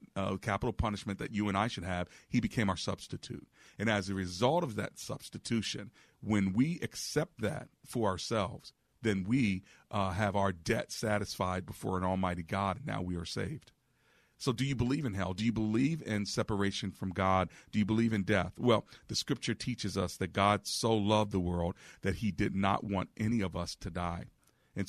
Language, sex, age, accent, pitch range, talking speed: English, male, 40-59, American, 95-110 Hz, 200 wpm